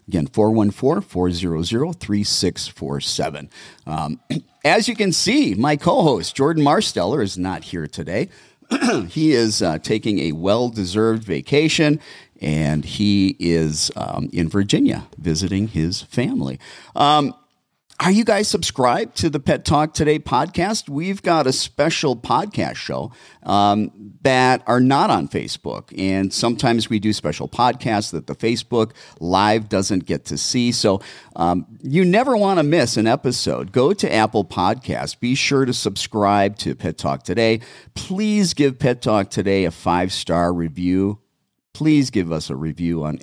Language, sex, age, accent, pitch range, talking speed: English, male, 40-59, American, 90-140 Hz, 145 wpm